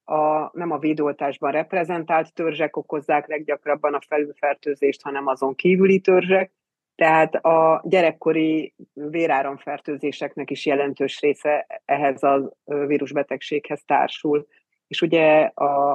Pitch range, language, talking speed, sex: 140-160 Hz, Hungarian, 105 wpm, female